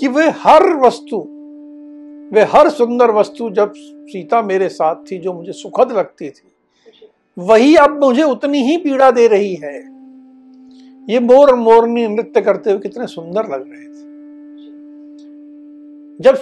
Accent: native